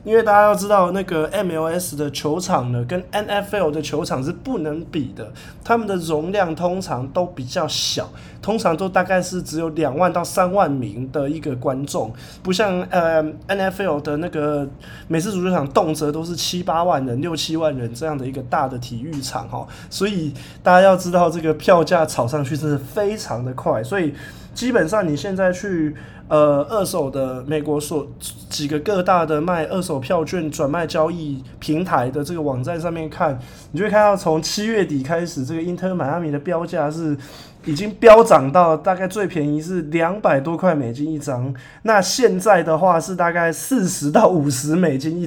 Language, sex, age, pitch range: Chinese, male, 20-39, 145-185 Hz